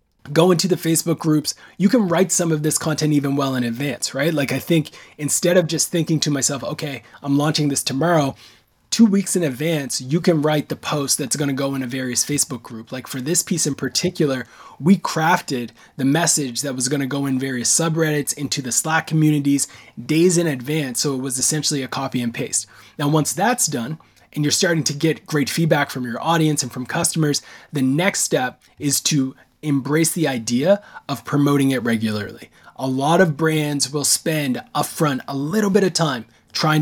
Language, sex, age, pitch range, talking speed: English, male, 20-39, 135-165 Hz, 200 wpm